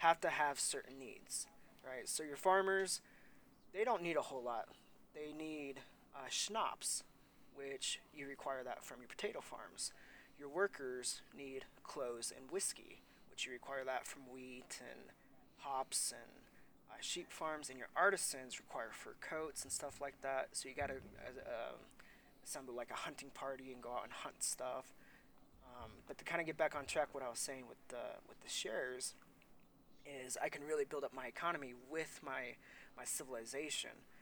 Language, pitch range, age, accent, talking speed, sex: English, 125-150 Hz, 20-39, American, 175 wpm, male